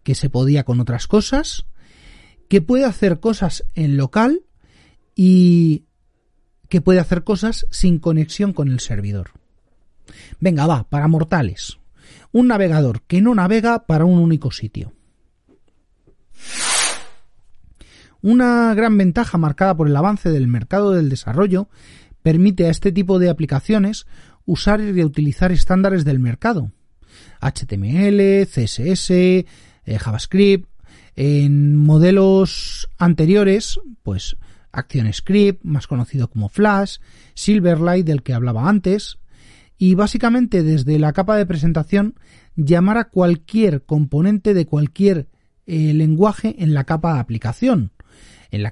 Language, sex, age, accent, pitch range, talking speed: Spanish, male, 40-59, Spanish, 130-200 Hz, 120 wpm